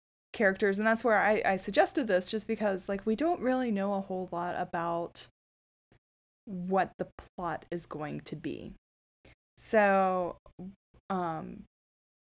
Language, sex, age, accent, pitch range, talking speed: English, female, 20-39, American, 165-215 Hz, 135 wpm